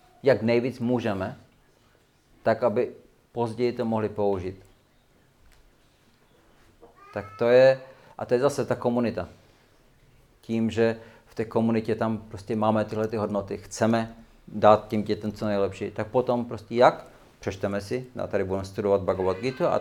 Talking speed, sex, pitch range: 145 wpm, male, 100-120 Hz